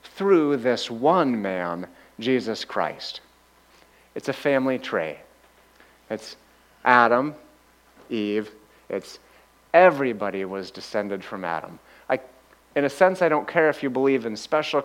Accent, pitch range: American, 110-135 Hz